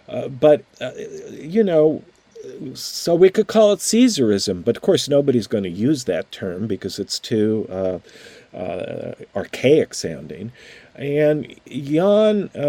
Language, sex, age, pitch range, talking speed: English, male, 50-69, 110-150 Hz, 135 wpm